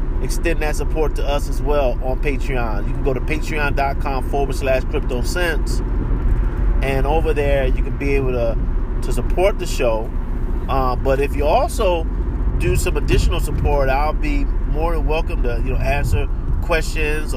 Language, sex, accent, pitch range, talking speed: English, male, American, 110-130 Hz, 170 wpm